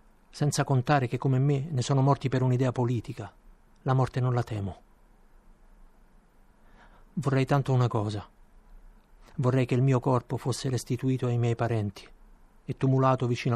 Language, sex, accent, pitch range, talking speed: Italian, male, native, 115-130 Hz, 145 wpm